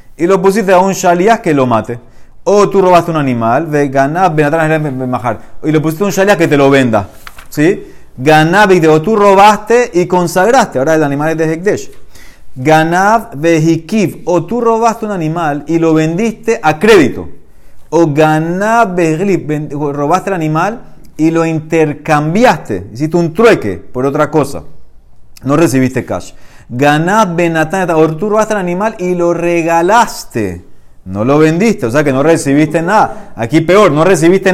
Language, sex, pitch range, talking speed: Spanish, male, 140-185 Hz, 150 wpm